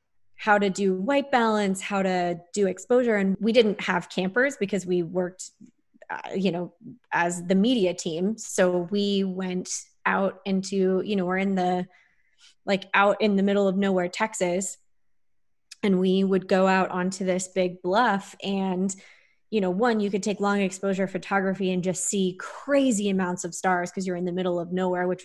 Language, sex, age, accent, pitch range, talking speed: English, female, 20-39, American, 180-205 Hz, 180 wpm